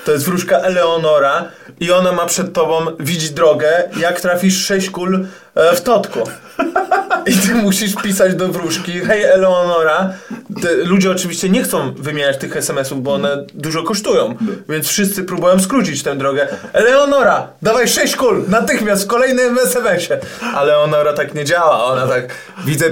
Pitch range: 160-220 Hz